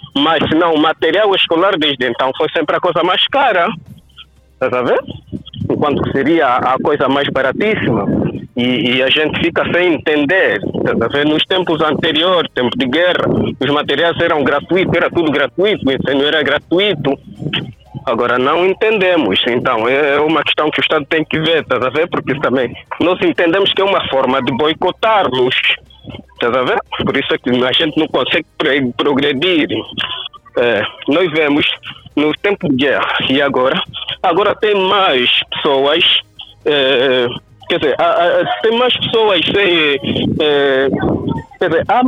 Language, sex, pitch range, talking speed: Portuguese, male, 140-190 Hz, 140 wpm